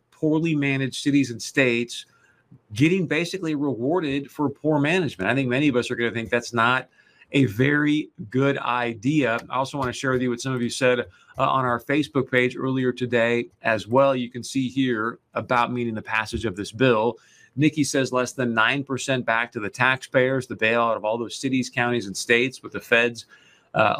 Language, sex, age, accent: English, male, 40-59, American